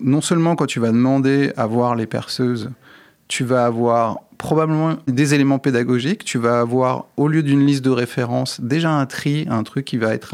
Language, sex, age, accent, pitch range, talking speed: French, male, 30-49, French, 120-135 Hz, 195 wpm